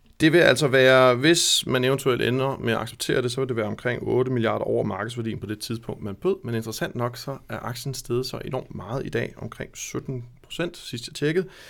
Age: 30-49